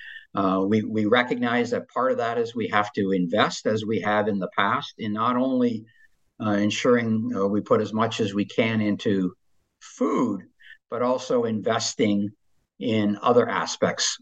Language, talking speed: English, 170 wpm